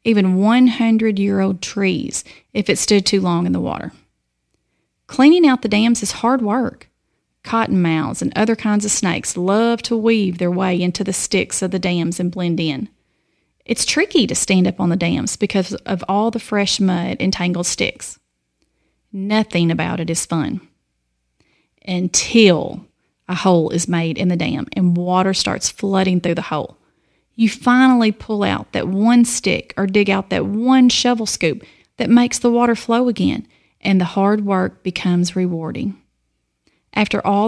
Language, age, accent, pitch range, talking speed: English, 30-49, American, 175-225 Hz, 165 wpm